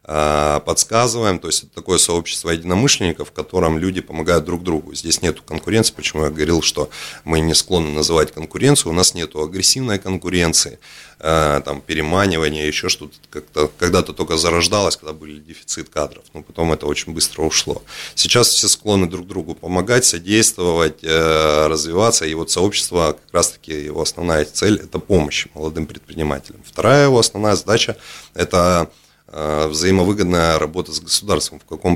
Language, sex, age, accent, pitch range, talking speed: Russian, male, 30-49, native, 75-95 Hz, 160 wpm